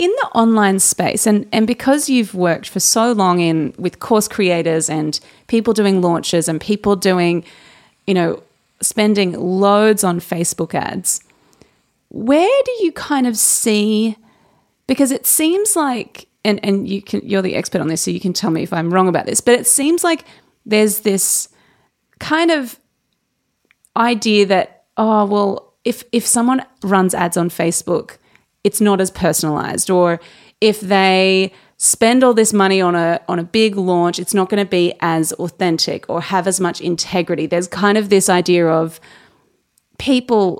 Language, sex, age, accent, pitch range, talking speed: English, female, 30-49, Australian, 175-225 Hz, 170 wpm